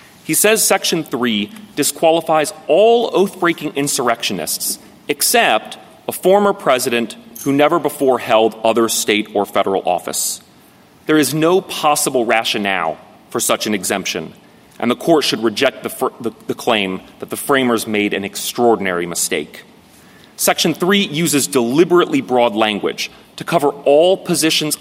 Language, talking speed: English, 135 wpm